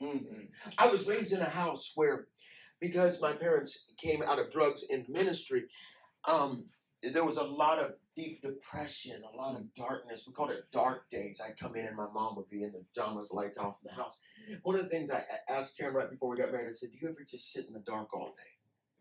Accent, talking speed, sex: American, 235 wpm, male